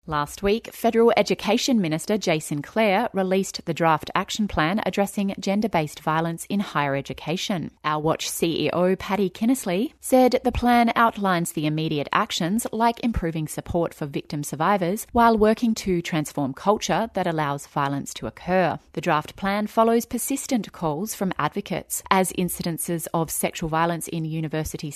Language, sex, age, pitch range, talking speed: English, female, 30-49, 150-200 Hz, 145 wpm